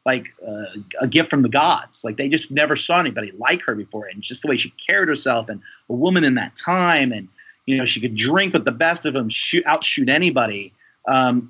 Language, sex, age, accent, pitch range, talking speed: English, male, 30-49, American, 120-150 Hz, 235 wpm